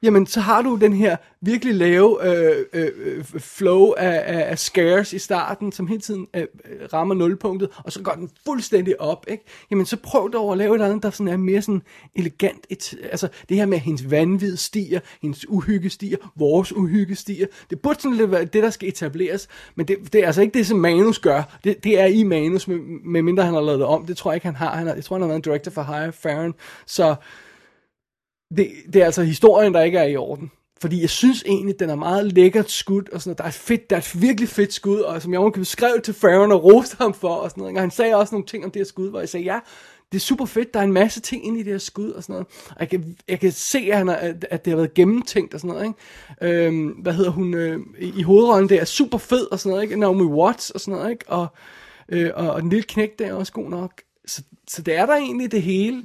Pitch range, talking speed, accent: 175-210 Hz, 260 wpm, native